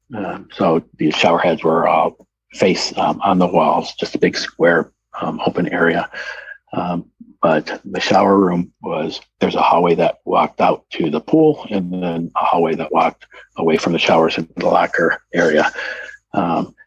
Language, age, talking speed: English, 50-69, 175 wpm